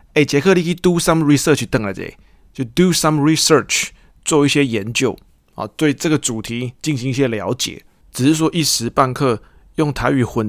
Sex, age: male, 20-39